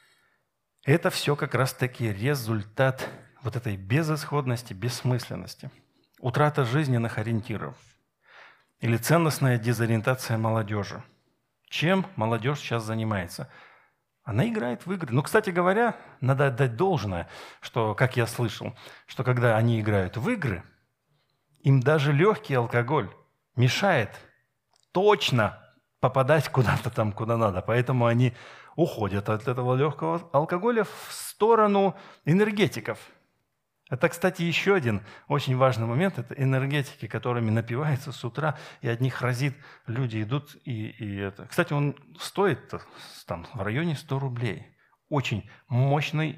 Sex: male